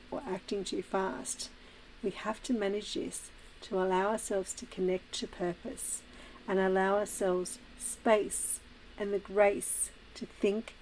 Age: 50-69